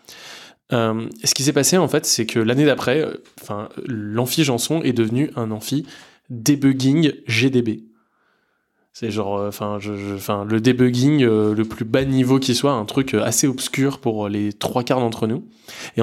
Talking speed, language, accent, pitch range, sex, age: 165 wpm, French, French, 110-130 Hz, male, 20-39